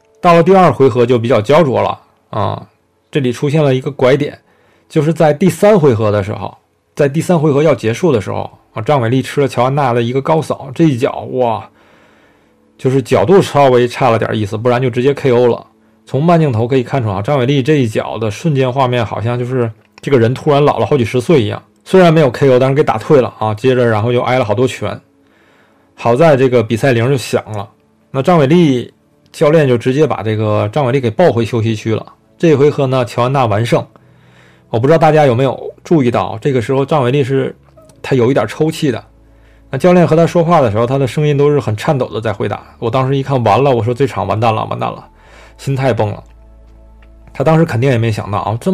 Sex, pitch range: male, 115-150 Hz